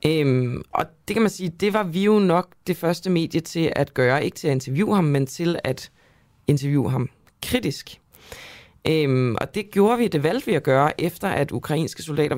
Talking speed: 205 wpm